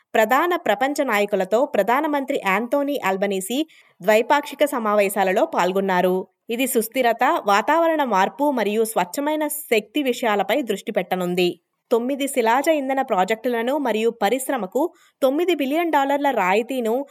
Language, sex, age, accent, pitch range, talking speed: Telugu, female, 20-39, native, 200-285 Hz, 105 wpm